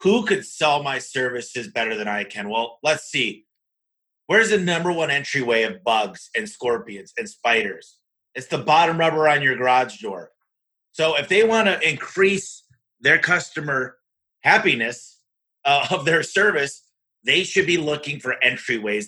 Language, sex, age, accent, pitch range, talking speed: English, male, 30-49, American, 115-155 Hz, 155 wpm